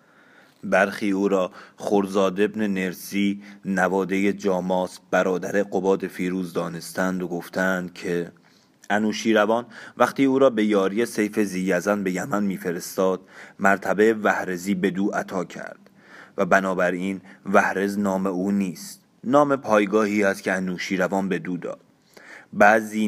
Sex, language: male, Persian